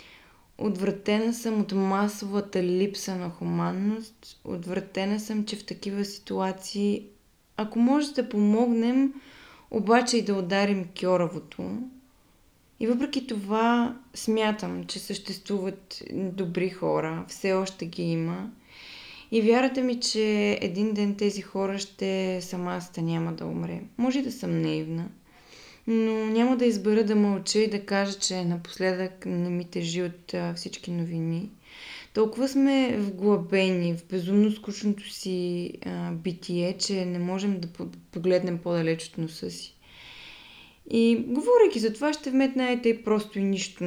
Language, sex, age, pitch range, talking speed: Bulgarian, female, 20-39, 180-225 Hz, 130 wpm